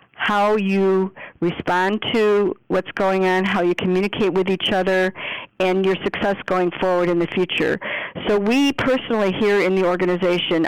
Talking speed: 155 wpm